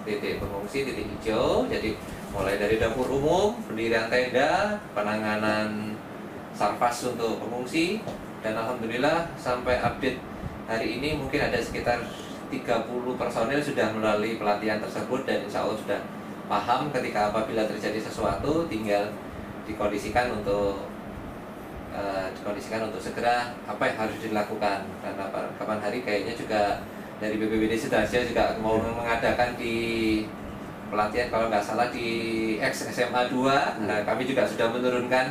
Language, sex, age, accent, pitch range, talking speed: Indonesian, male, 20-39, native, 105-135 Hz, 125 wpm